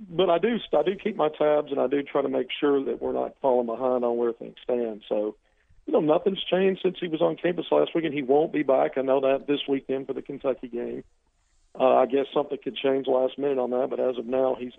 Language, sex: English, male